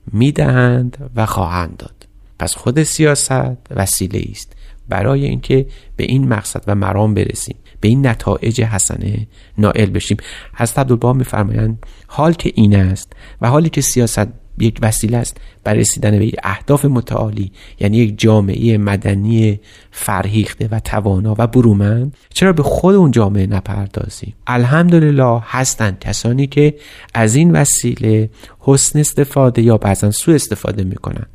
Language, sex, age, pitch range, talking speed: Persian, male, 40-59, 105-130 Hz, 135 wpm